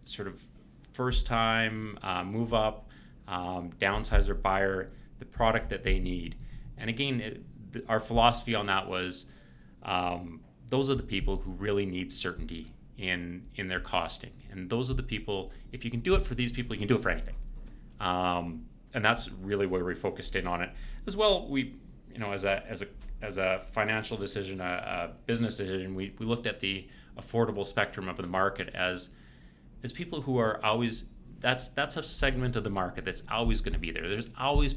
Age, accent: 30-49, American